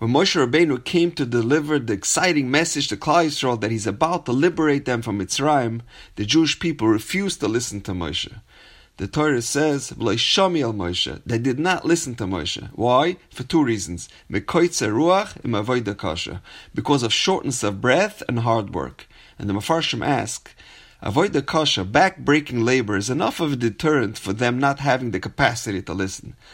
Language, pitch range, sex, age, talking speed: English, 110-165 Hz, male, 30-49, 160 wpm